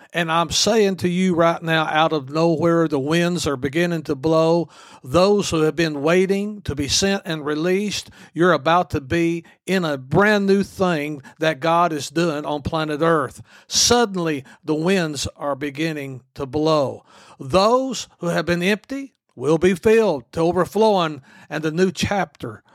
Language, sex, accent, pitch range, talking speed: English, male, American, 155-190 Hz, 165 wpm